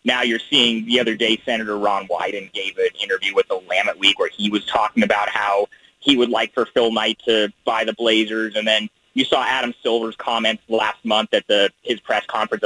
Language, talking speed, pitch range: English, 220 wpm, 110-155 Hz